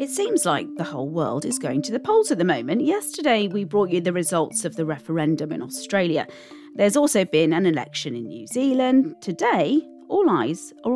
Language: English